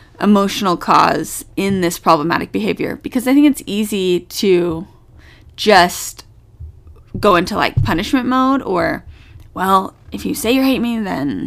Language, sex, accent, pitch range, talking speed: English, female, American, 160-230 Hz, 140 wpm